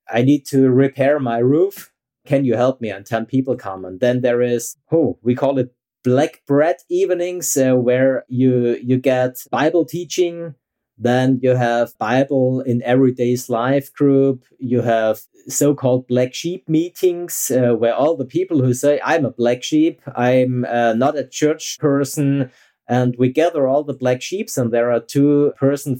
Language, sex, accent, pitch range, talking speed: English, male, German, 120-145 Hz, 175 wpm